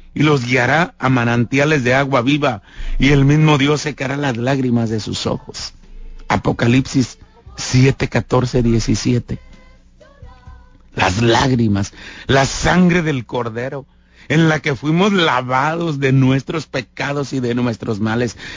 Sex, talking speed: male, 130 wpm